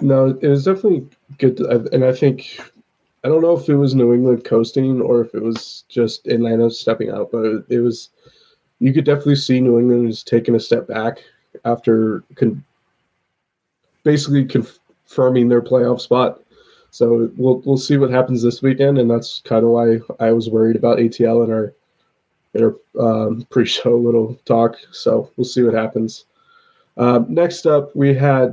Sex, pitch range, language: male, 115-135 Hz, English